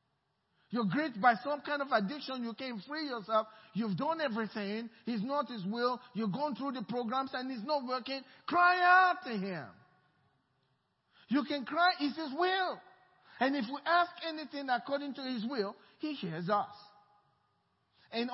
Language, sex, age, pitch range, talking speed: English, male, 50-69, 195-265 Hz, 165 wpm